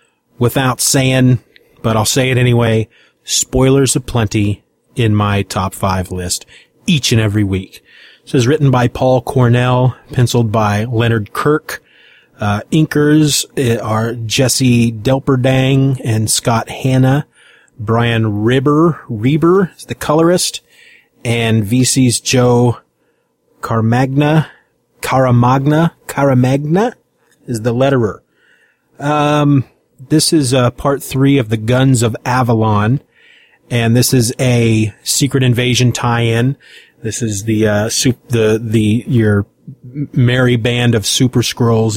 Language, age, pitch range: English, 30-49, 110-130 Hz